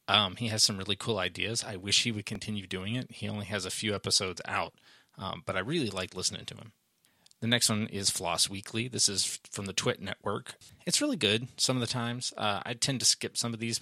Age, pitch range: 30-49, 95-115 Hz